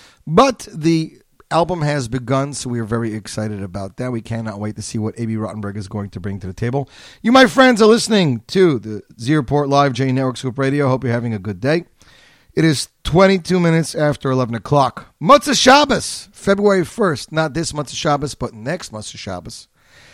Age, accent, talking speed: 40-59, American, 195 wpm